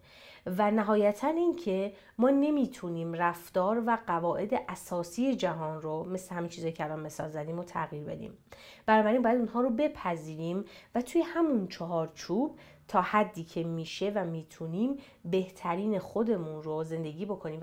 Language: Persian